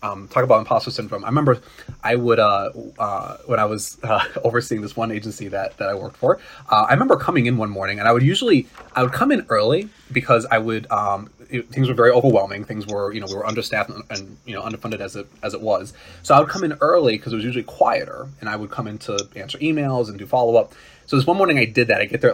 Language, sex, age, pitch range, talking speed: English, male, 20-39, 105-130 Hz, 265 wpm